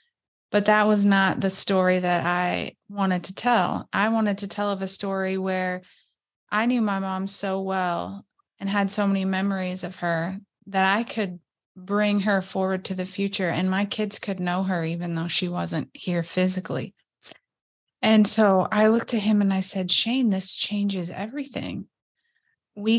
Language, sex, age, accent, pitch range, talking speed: English, female, 20-39, American, 175-205 Hz, 175 wpm